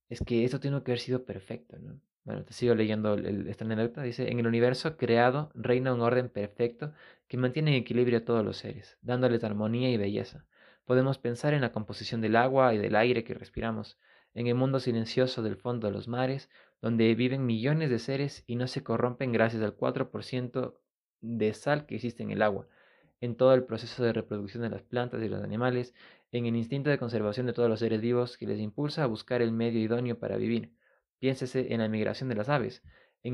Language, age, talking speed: Spanish, 20-39, 210 wpm